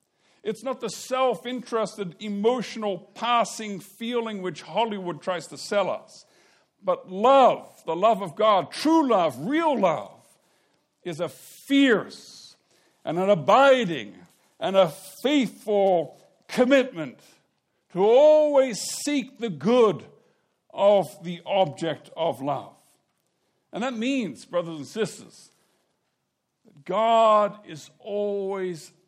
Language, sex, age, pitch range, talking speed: English, male, 60-79, 190-245 Hz, 110 wpm